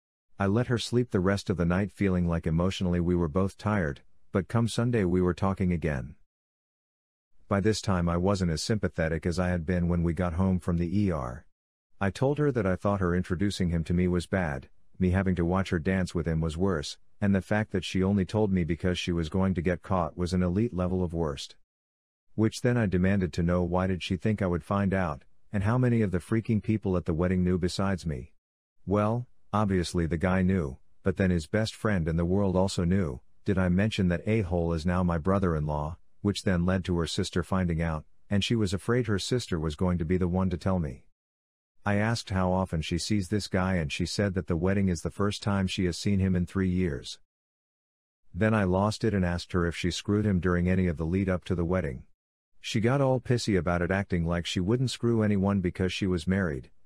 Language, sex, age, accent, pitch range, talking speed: English, male, 50-69, American, 85-100 Hz, 230 wpm